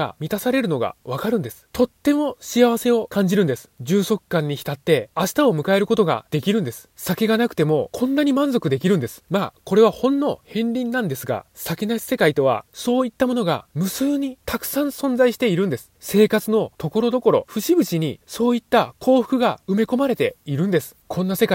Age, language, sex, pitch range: 20-39, Japanese, male, 160-245 Hz